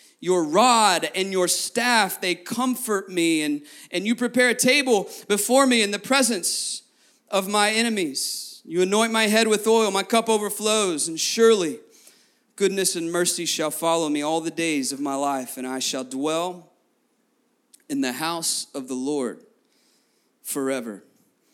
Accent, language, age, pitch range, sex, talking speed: American, English, 30-49, 155-220 Hz, male, 155 wpm